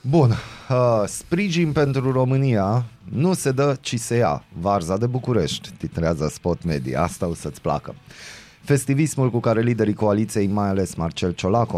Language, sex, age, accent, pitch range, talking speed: Romanian, male, 30-49, native, 85-120 Hz, 155 wpm